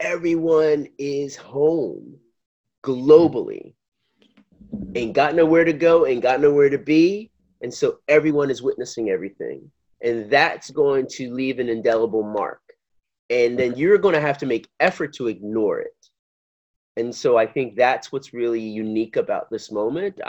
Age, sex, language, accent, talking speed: 30-49, male, English, American, 150 wpm